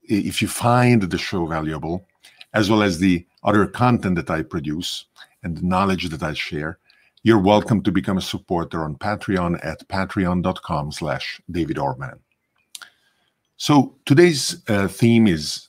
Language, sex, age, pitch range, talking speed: English, male, 50-69, 90-110 Hz, 150 wpm